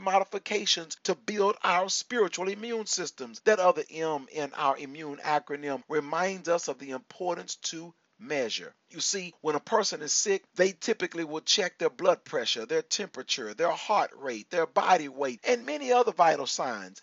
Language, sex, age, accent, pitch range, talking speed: English, male, 40-59, American, 165-220 Hz, 170 wpm